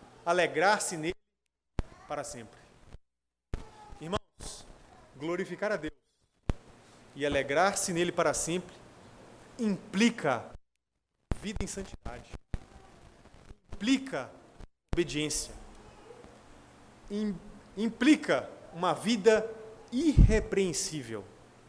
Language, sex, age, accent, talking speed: Portuguese, male, 30-49, Brazilian, 65 wpm